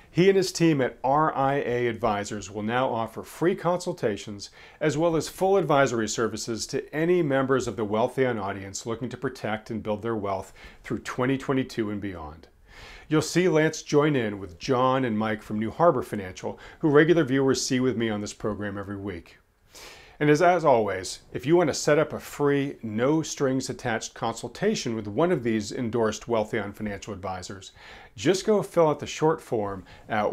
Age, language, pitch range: 40-59, English, 105-150 Hz